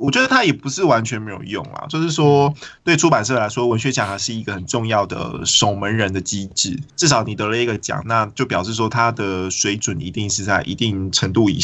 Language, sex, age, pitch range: Chinese, male, 20-39, 100-135 Hz